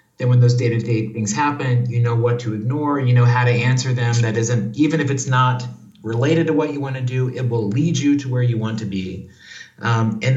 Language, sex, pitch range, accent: English, male, 110-135 Hz, American